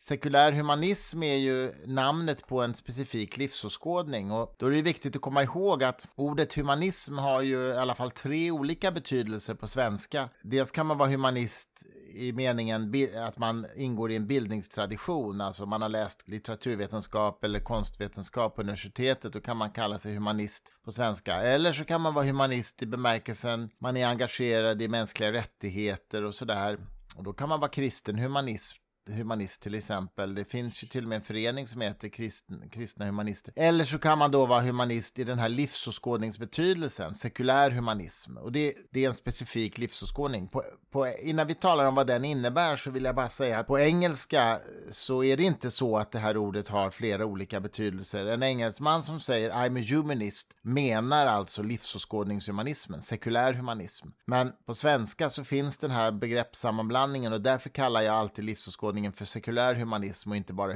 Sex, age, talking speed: male, 30-49, 175 wpm